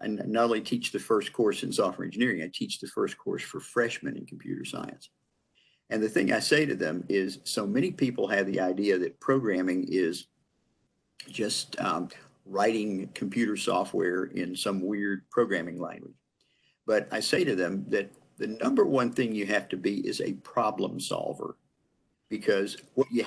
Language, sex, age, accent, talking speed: English, male, 50-69, American, 175 wpm